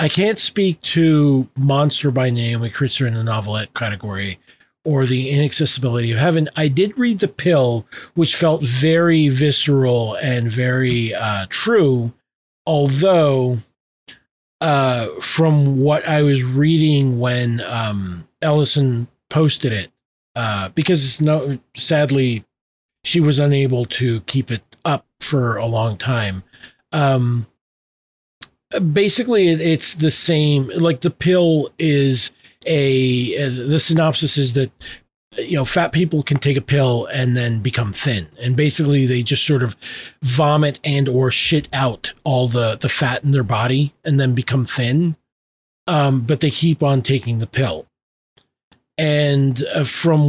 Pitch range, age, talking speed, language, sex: 125-150 Hz, 40-59, 140 wpm, English, male